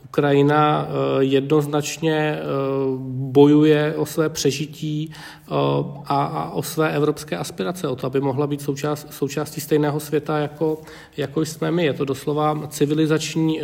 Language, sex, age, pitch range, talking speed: Czech, male, 40-59, 140-155 Hz, 120 wpm